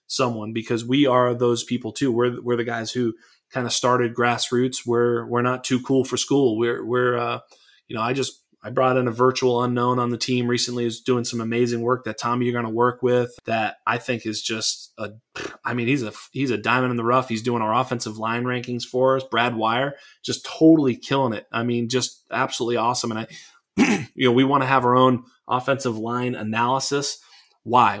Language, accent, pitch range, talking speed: English, American, 115-125 Hz, 215 wpm